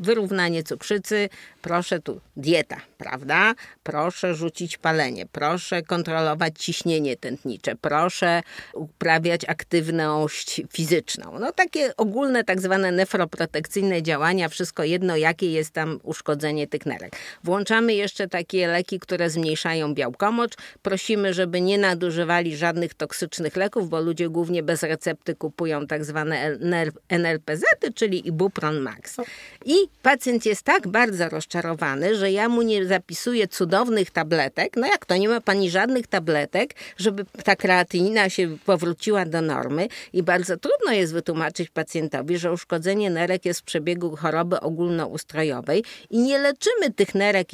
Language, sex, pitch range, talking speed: Polish, female, 160-195 Hz, 135 wpm